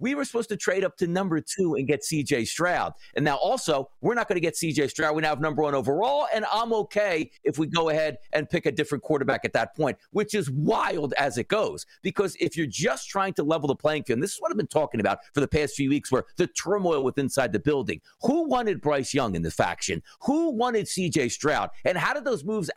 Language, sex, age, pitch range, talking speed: English, male, 50-69, 140-200 Hz, 255 wpm